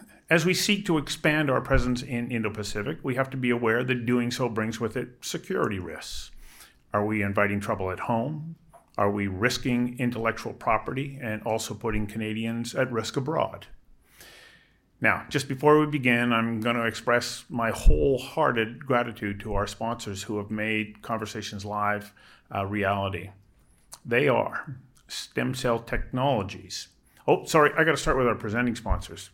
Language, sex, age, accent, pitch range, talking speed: English, male, 40-59, American, 105-125 Hz, 155 wpm